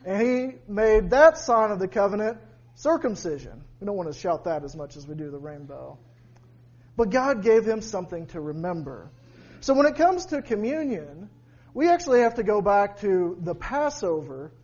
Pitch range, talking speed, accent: 145-235 Hz, 180 wpm, American